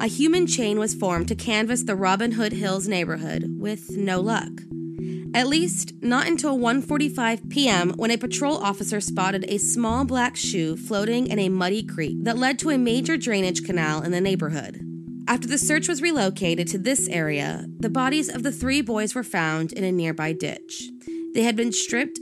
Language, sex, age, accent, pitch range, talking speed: English, female, 20-39, American, 180-265 Hz, 185 wpm